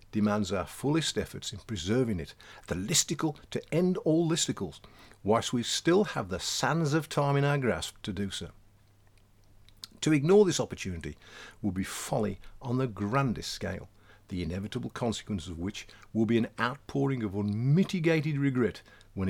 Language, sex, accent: English, male, British